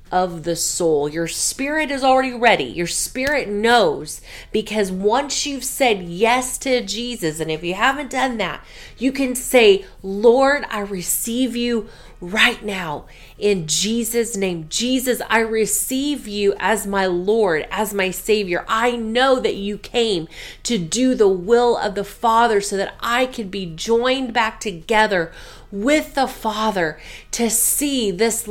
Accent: American